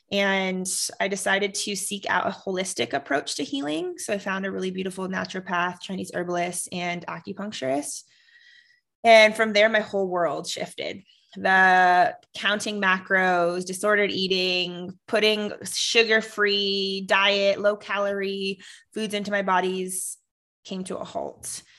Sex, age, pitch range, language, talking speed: female, 20-39, 185-215 Hz, English, 130 wpm